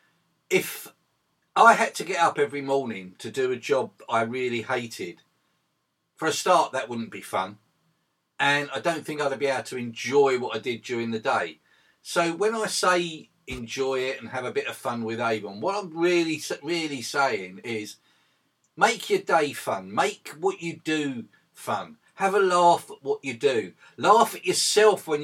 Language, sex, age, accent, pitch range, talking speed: English, male, 50-69, British, 135-175 Hz, 185 wpm